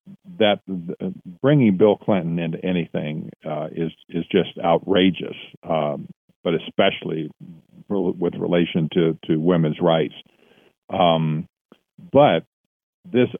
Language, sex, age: English, male, 50-69